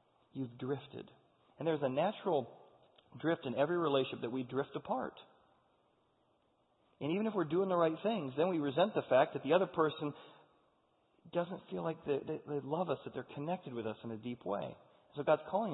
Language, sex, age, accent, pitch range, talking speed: English, male, 40-59, American, 120-150 Hz, 195 wpm